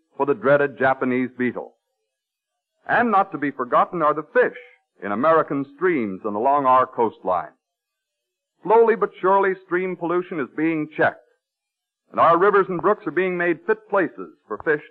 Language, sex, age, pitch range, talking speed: English, male, 50-69, 135-190 Hz, 160 wpm